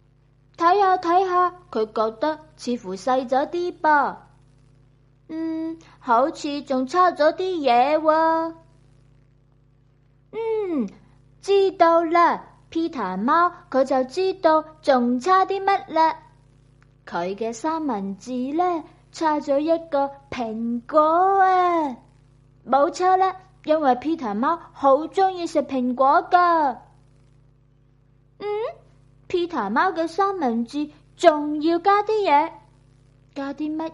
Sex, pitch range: female, 215-335 Hz